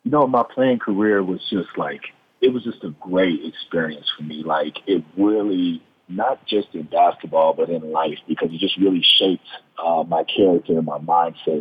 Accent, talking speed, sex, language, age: American, 195 wpm, male, English, 40-59